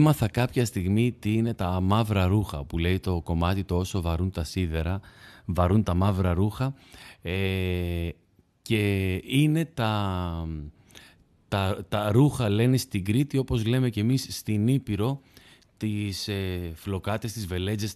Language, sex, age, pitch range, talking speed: Greek, male, 30-49, 90-110 Hz, 130 wpm